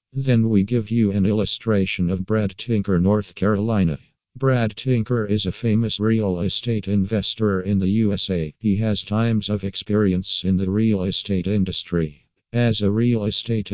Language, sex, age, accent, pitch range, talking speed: English, male, 50-69, American, 95-110 Hz, 155 wpm